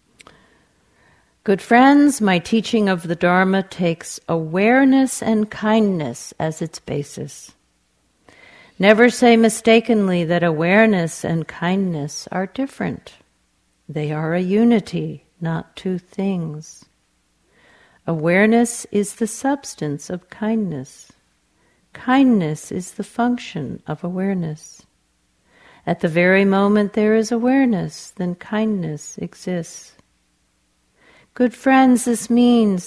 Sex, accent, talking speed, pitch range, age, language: female, American, 100 wpm, 155-215 Hz, 50-69, English